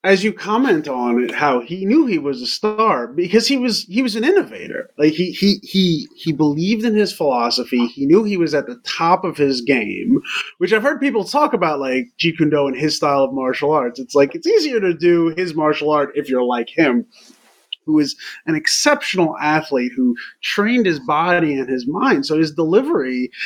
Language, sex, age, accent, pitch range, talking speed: English, male, 30-49, American, 140-215 Hz, 210 wpm